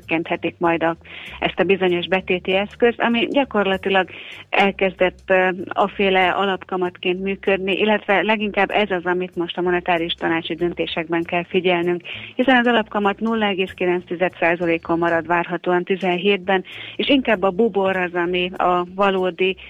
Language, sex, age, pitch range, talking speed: Hungarian, female, 30-49, 175-205 Hz, 125 wpm